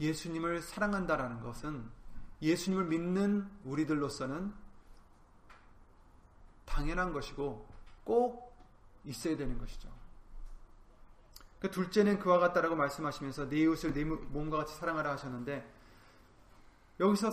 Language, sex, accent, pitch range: Korean, male, native, 120-190 Hz